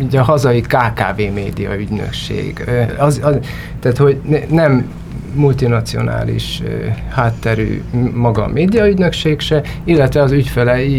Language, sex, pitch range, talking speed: Hungarian, male, 110-135 Hz, 105 wpm